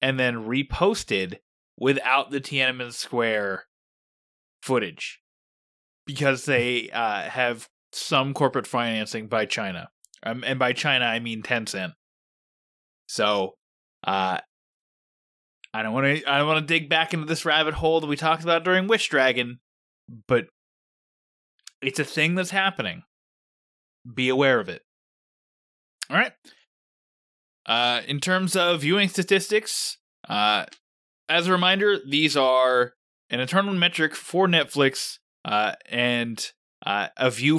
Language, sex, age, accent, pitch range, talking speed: English, male, 20-39, American, 120-170 Hz, 130 wpm